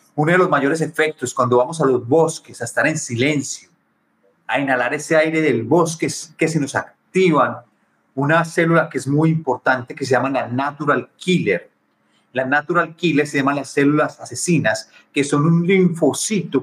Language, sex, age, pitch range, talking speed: Spanish, male, 40-59, 125-155 Hz, 175 wpm